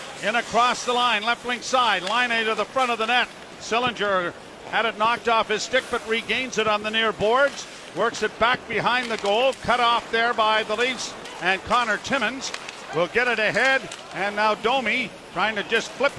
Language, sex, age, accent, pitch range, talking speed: English, male, 50-69, American, 210-255 Hz, 205 wpm